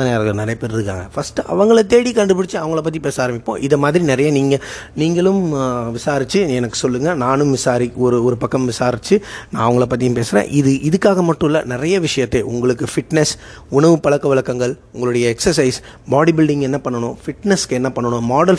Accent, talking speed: native, 155 wpm